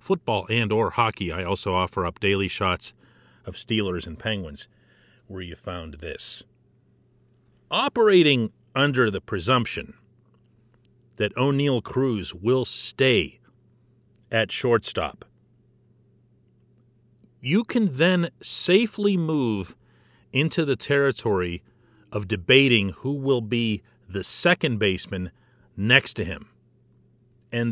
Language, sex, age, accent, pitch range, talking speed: English, male, 40-59, American, 100-140 Hz, 105 wpm